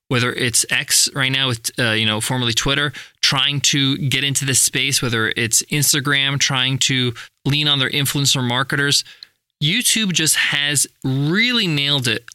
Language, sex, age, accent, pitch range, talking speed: English, male, 20-39, American, 130-165 Hz, 160 wpm